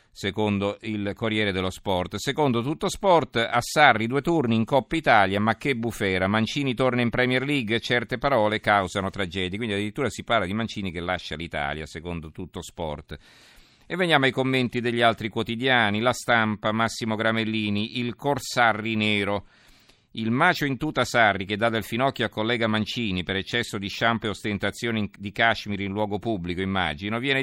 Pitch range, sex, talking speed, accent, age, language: 100-120 Hz, male, 170 wpm, native, 50-69, Italian